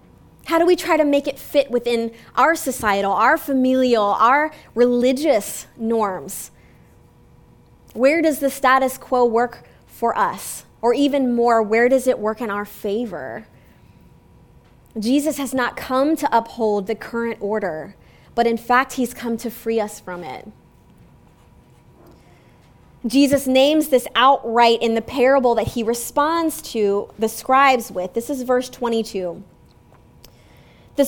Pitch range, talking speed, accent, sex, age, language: 205-265 Hz, 140 wpm, American, female, 20-39, English